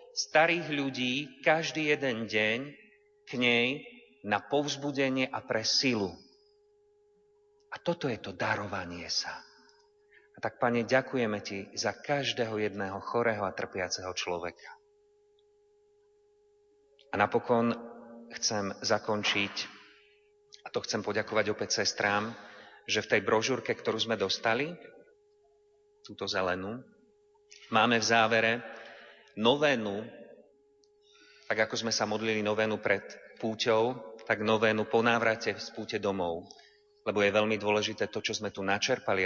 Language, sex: Slovak, male